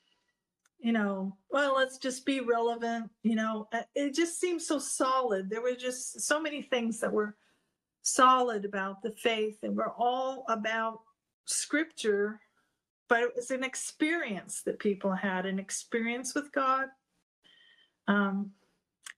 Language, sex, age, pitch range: English, female, 50-69, 205-255 Hz